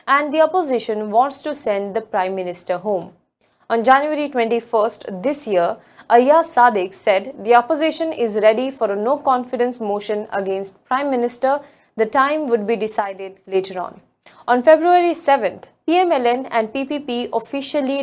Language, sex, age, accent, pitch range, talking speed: English, female, 20-39, Indian, 210-275 Hz, 145 wpm